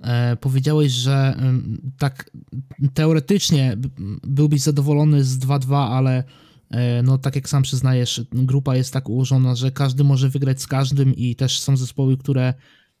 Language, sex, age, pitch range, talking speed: Polish, male, 20-39, 130-155 Hz, 135 wpm